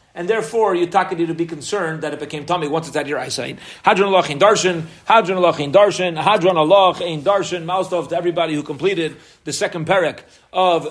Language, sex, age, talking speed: English, male, 40-59, 210 wpm